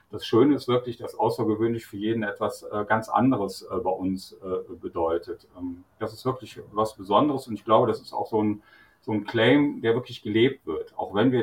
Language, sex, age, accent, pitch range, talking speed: German, male, 40-59, German, 105-125 Hz, 190 wpm